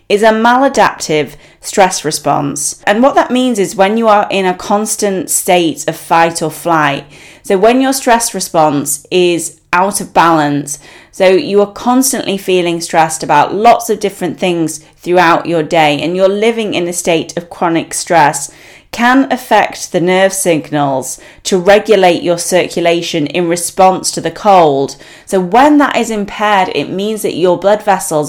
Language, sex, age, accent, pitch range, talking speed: English, female, 30-49, British, 160-205 Hz, 165 wpm